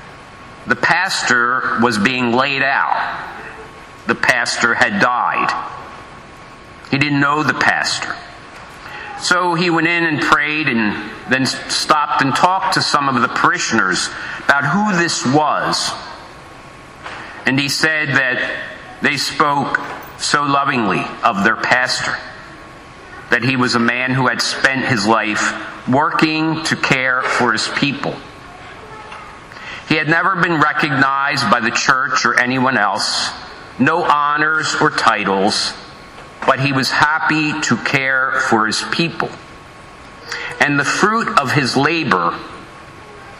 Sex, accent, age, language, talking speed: male, American, 50-69, English, 125 wpm